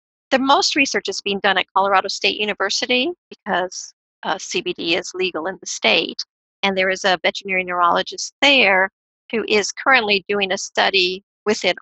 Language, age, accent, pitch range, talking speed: English, 50-69, American, 195-255 Hz, 170 wpm